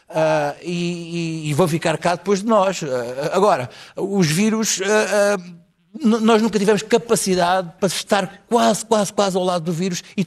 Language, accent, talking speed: Portuguese, Portuguese, 145 wpm